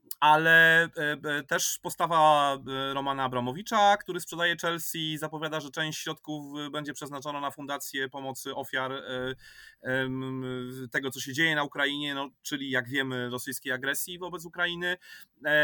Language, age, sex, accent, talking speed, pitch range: Polish, 30-49, male, native, 125 wpm, 130-165 Hz